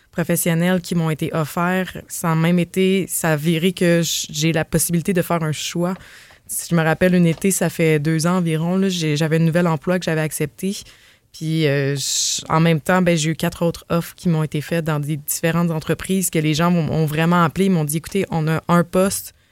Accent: Canadian